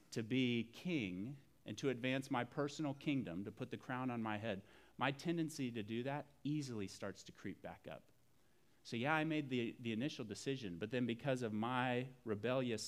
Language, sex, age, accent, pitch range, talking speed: English, male, 30-49, American, 100-130 Hz, 190 wpm